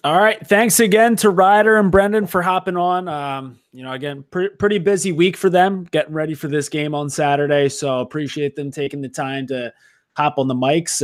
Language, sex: English, male